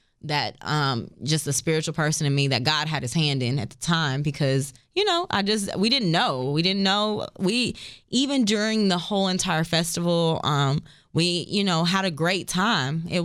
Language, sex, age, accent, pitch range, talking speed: English, female, 20-39, American, 145-180 Hz, 200 wpm